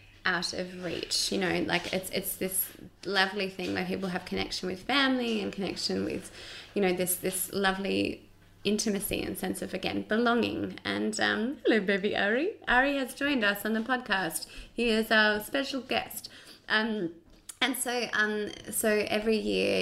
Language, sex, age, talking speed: English, female, 20-39, 165 wpm